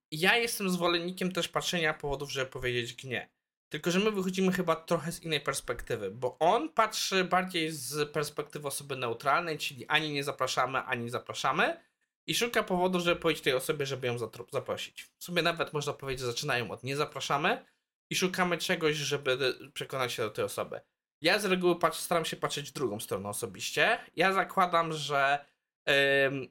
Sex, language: male, Polish